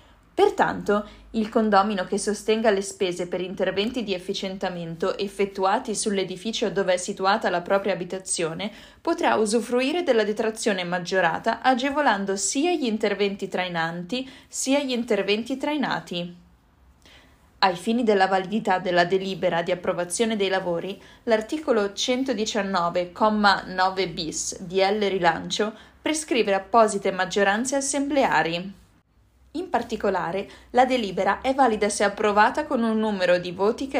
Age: 20-39